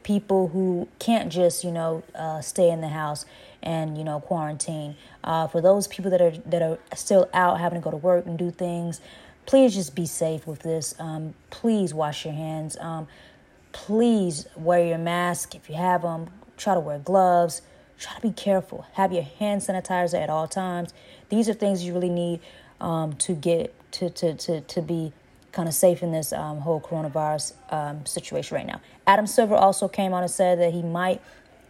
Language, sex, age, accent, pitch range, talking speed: English, female, 20-39, American, 165-195 Hz, 200 wpm